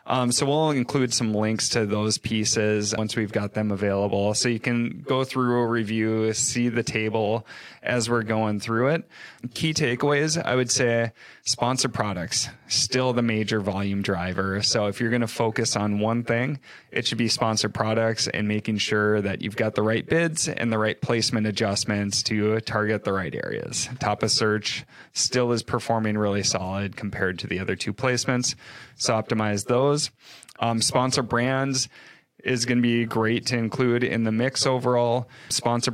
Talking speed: 175 wpm